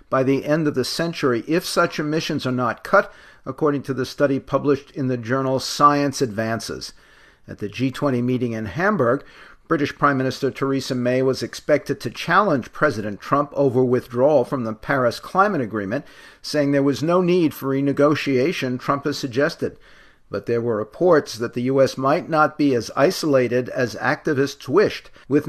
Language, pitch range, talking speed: English, 115-145 Hz, 170 wpm